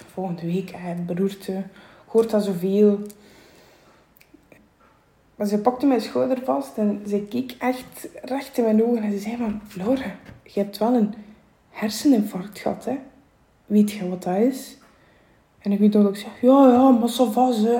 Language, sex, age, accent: English, female, 20-39, Dutch